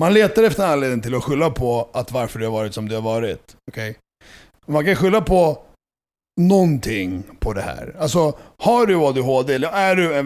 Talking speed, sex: 195 wpm, male